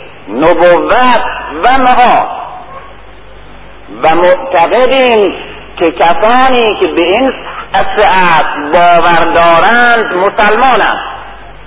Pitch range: 170-280 Hz